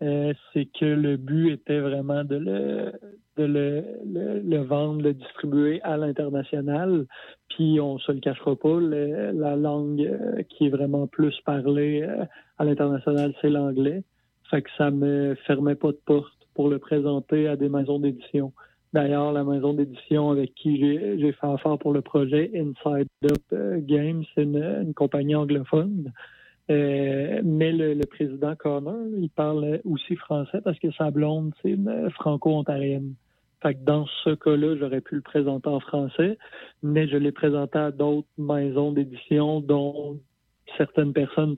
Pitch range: 140-155 Hz